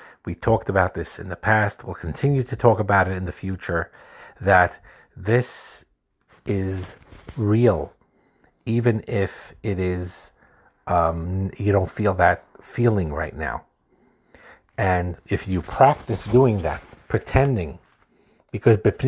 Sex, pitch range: male, 95-115 Hz